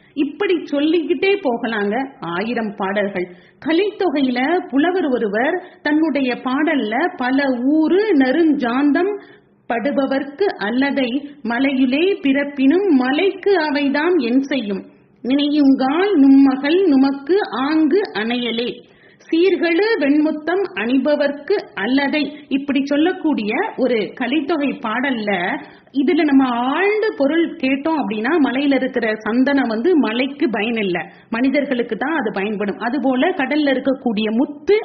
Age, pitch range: 30-49, 245-320 Hz